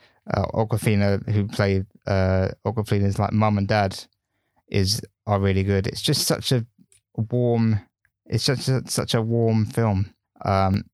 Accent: British